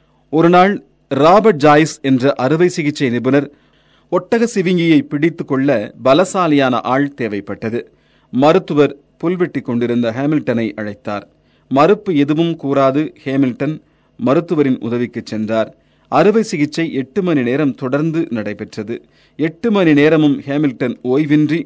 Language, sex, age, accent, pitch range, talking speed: Tamil, male, 40-59, native, 125-160 Hz, 105 wpm